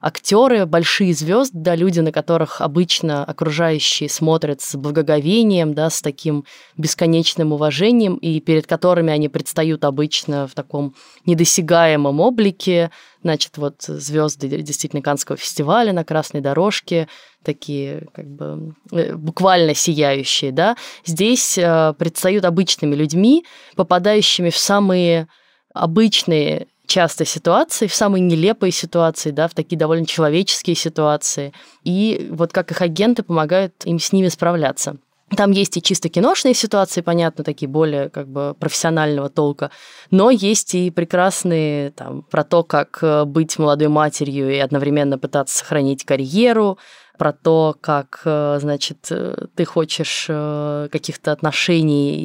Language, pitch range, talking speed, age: Russian, 150-180 Hz, 120 wpm, 20-39